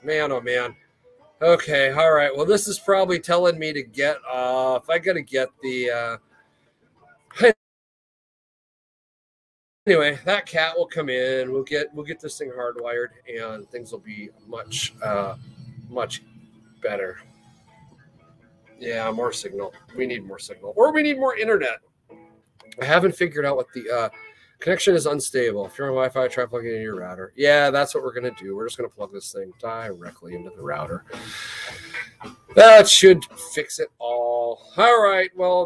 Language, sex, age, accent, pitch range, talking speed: English, male, 40-59, American, 120-185 Hz, 165 wpm